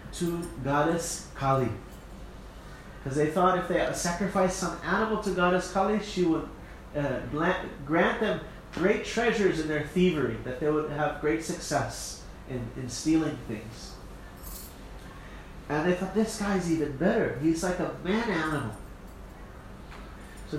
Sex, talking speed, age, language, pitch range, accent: male, 135 wpm, 30-49, English, 135-180 Hz, American